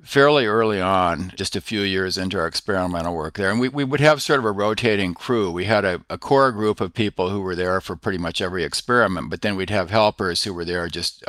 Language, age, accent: English, 50-69, American